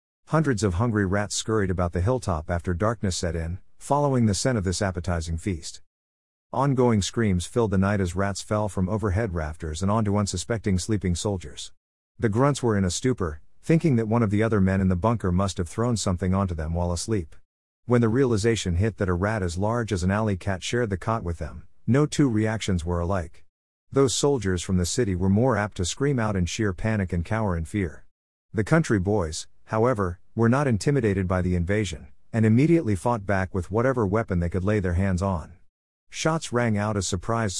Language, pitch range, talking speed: English, 90-115 Hz, 205 wpm